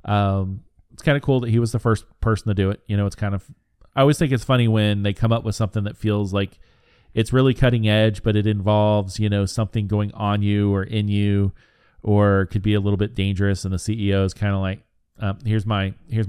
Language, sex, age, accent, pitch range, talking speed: English, male, 40-59, American, 100-115 Hz, 245 wpm